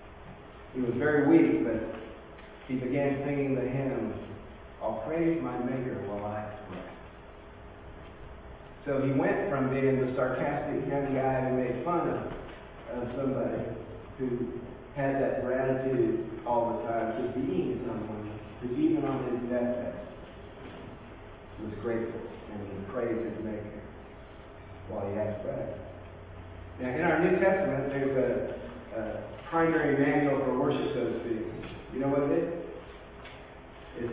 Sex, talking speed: male, 135 wpm